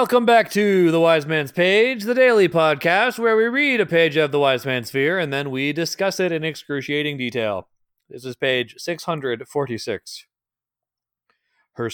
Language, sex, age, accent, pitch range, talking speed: English, male, 30-49, American, 125-180 Hz, 165 wpm